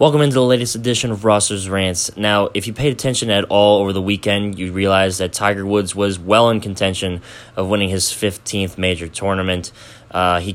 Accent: American